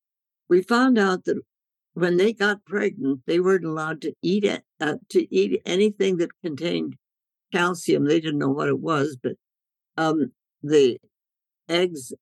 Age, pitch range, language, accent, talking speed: 60-79, 155-205 Hz, English, American, 150 wpm